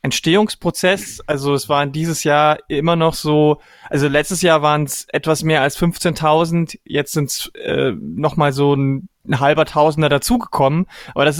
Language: German